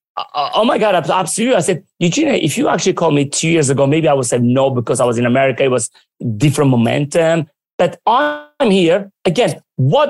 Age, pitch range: 30-49, 135-175 Hz